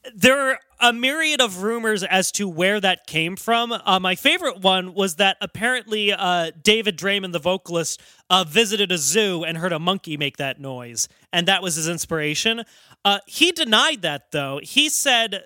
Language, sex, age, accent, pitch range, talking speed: English, male, 30-49, American, 170-225 Hz, 185 wpm